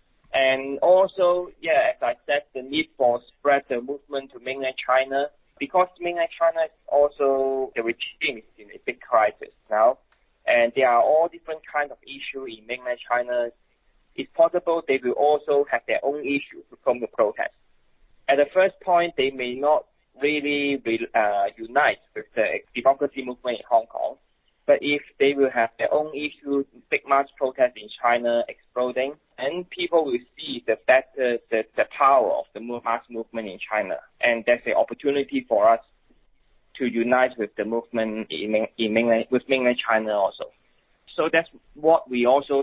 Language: English